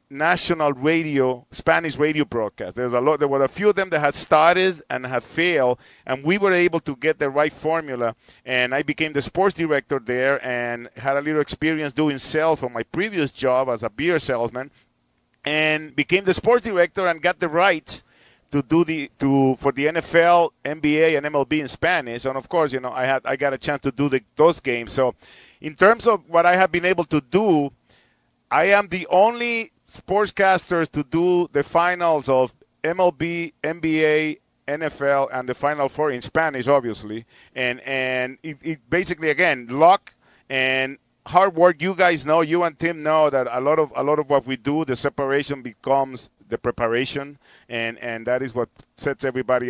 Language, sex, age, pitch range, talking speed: English, male, 50-69, 130-165 Hz, 190 wpm